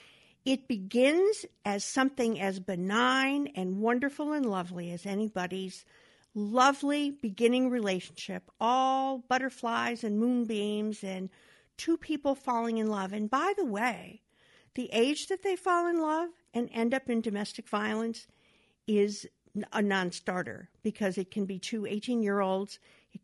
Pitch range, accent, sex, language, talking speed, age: 185-245 Hz, American, female, English, 135 wpm, 50-69